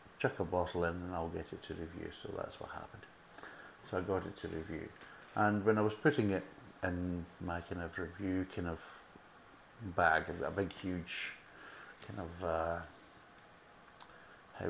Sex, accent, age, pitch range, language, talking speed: male, British, 60-79, 90-100 Hz, English, 165 wpm